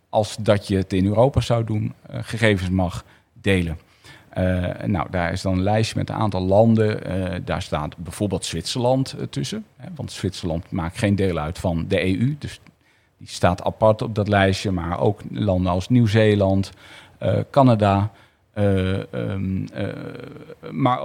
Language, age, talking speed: Dutch, 40-59, 155 wpm